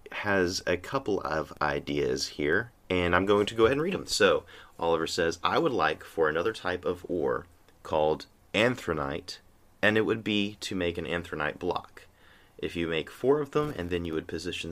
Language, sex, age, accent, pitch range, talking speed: English, male, 30-49, American, 85-115 Hz, 195 wpm